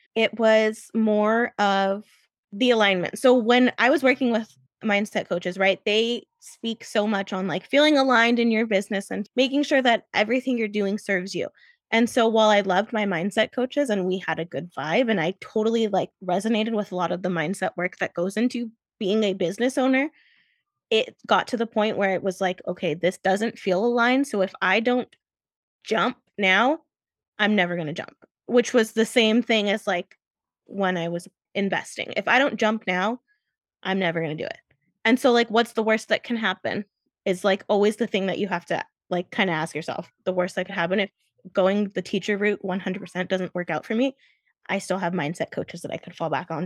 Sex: female